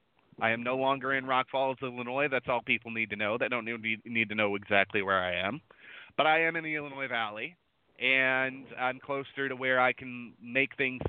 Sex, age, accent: male, 30-49, American